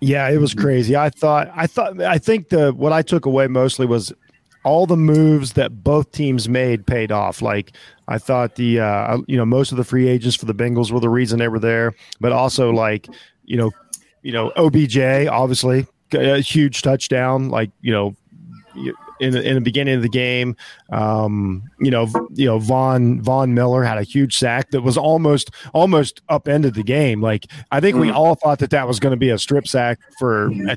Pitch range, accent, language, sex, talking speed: 120-150 Hz, American, English, male, 210 wpm